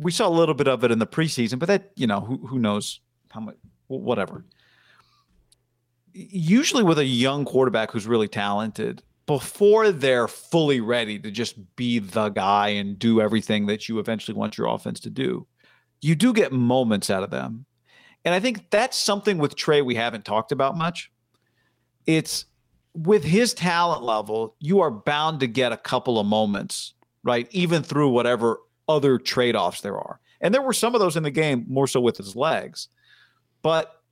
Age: 40-59